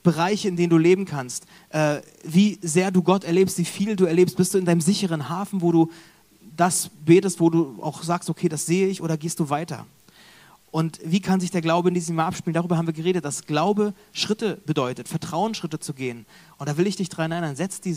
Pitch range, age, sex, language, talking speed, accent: 150-185 Hz, 30-49, male, German, 225 wpm, German